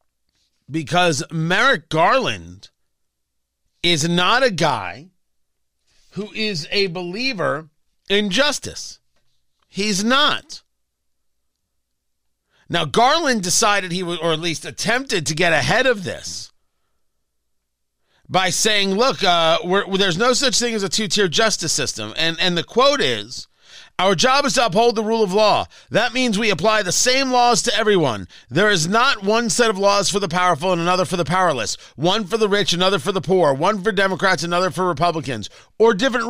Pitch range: 165-225 Hz